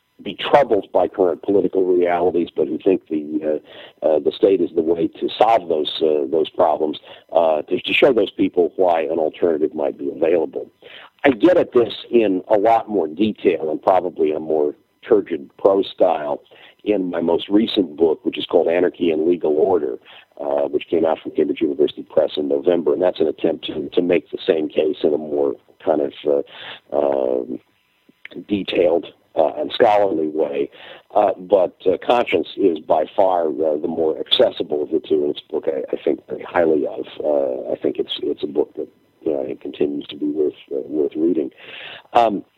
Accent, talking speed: American, 190 wpm